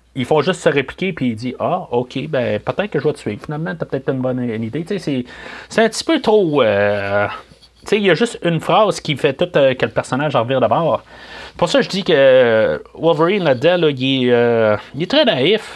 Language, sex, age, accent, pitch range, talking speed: French, male, 30-49, Canadian, 130-205 Hz, 230 wpm